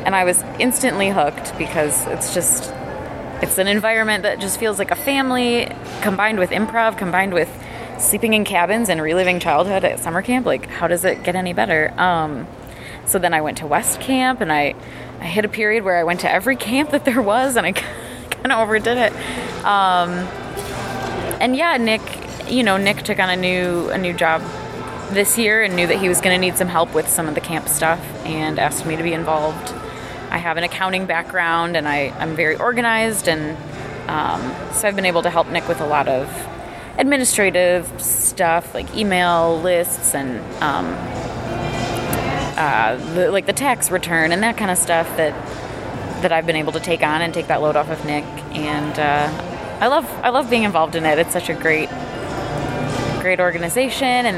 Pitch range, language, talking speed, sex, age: 160-215 Hz, English, 195 wpm, female, 20-39